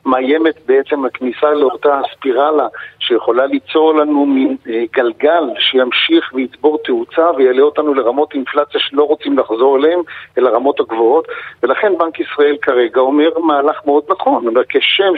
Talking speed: 135 wpm